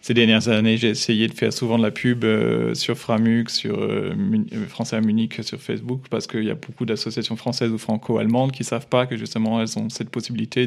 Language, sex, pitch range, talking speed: French, male, 110-125 Hz, 235 wpm